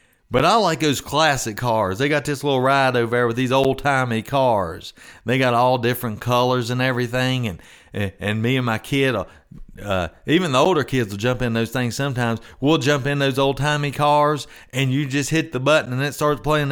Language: English